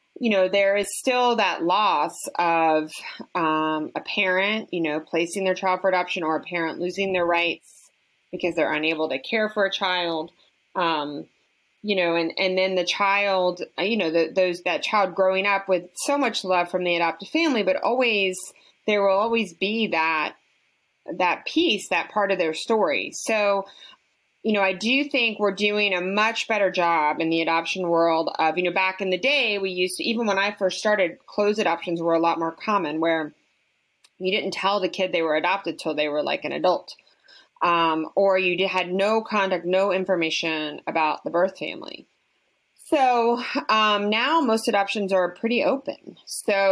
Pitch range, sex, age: 170-205 Hz, female, 30-49